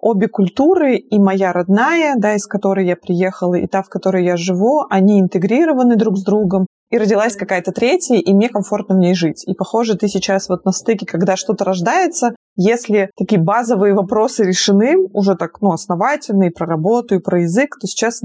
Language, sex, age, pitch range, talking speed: Russian, female, 20-39, 190-230 Hz, 185 wpm